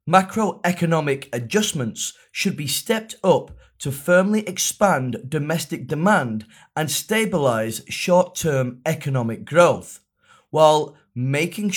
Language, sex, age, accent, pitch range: Chinese, male, 30-49, British, 130-180 Hz